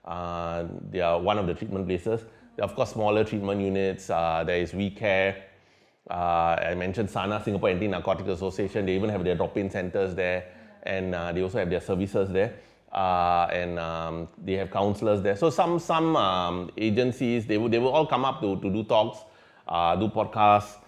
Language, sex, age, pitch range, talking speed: English, male, 30-49, 90-110 Hz, 200 wpm